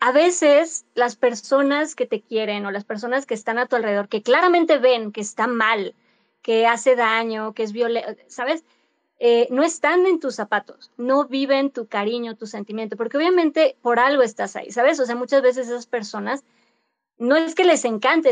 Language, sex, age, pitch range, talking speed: Spanish, female, 20-39, 225-270 Hz, 190 wpm